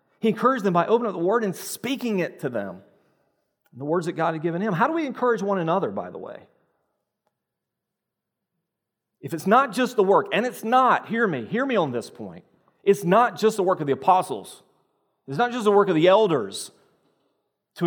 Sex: male